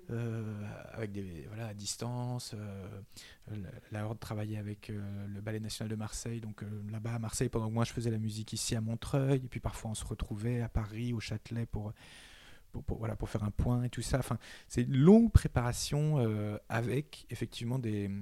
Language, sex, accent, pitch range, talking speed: French, male, French, 110-130 Hz, 205 wpm